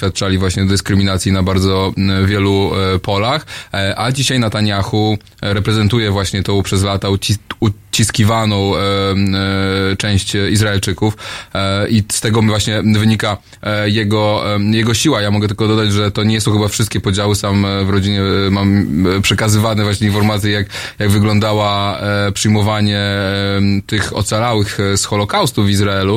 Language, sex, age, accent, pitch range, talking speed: Polish, male, 20-39, native, 100-110 Hz, 160 wpm